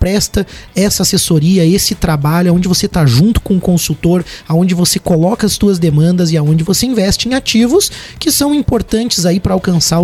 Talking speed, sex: 175 wpm, male